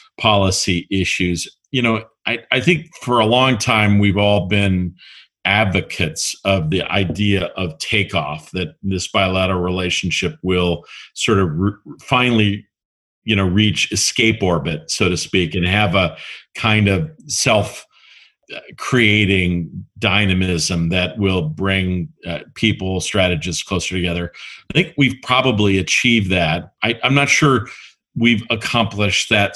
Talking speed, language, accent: 130 wpm, English, American